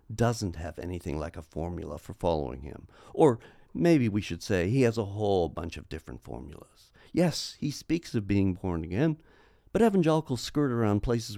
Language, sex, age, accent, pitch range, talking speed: English, male, 50-69, American, 90-130 Hz, 180 wpm